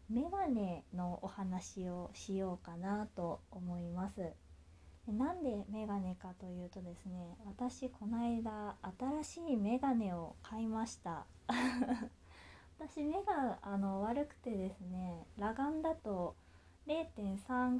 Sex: female